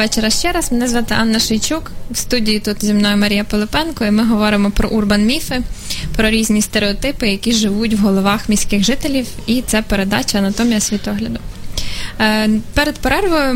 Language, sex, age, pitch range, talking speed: Ukrainian, female, 10-29, 210-245 Hz, 160 wpm